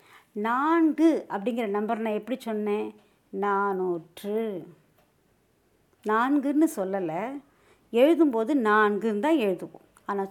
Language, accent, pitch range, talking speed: Tamil, native, 190-275 Hz, 80 wpm